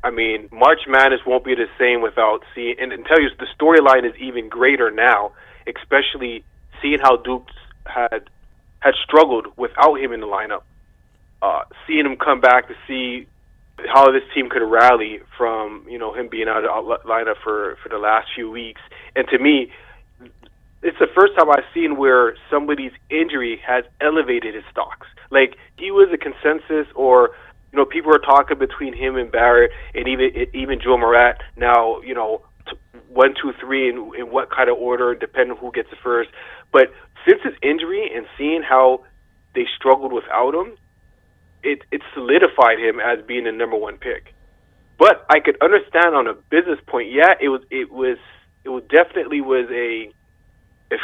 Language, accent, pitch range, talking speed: English, American, 120-155 Hz, 180 wpm